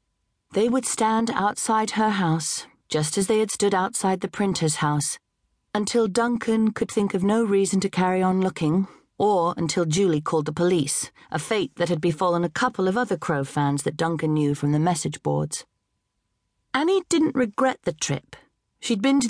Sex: female